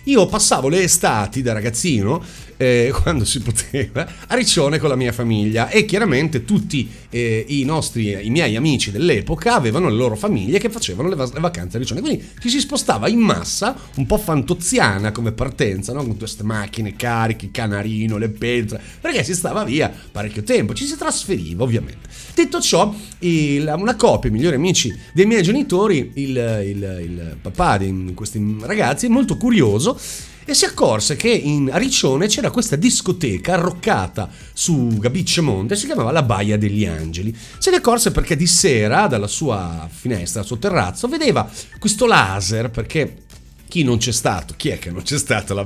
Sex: male